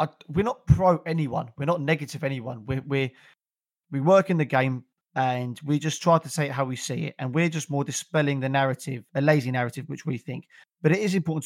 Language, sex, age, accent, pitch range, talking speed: English, male, 30-49, British, 130-155 Hz, 220 wpm